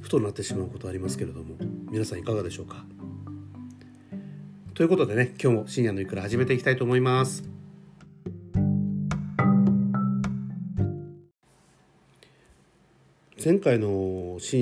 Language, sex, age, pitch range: Japanese, male, 40-59, 90-130 Hz